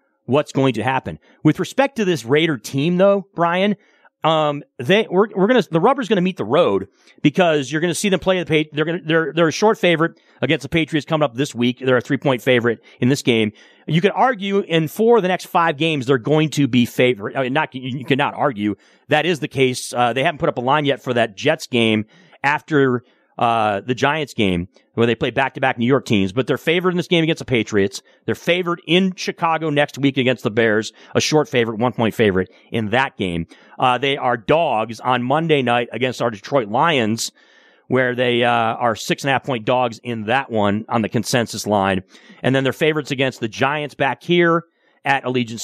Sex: male